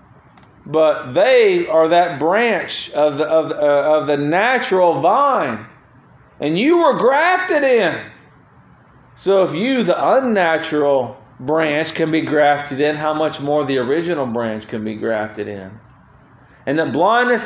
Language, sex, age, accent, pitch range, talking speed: English, male, 40-59, American, 140-195 Hz, 145 wpm